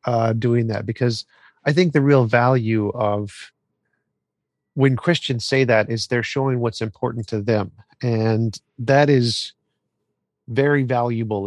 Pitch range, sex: 110-130 Hz, male